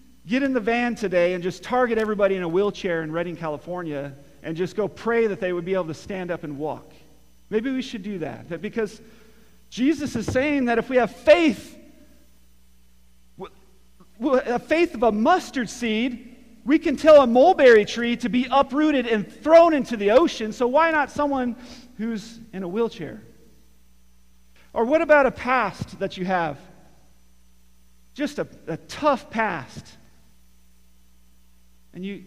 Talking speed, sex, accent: 160 wpm, male, American